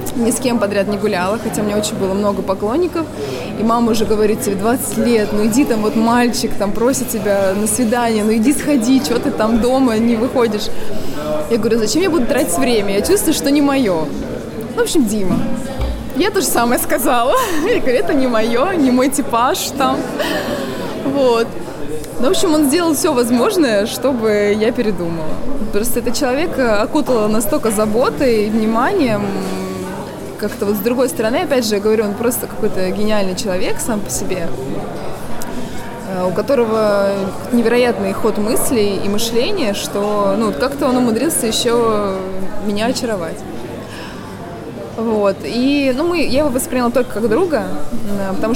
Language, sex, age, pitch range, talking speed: Russian, female, 20-39, 210-255 Hz, 160 wpm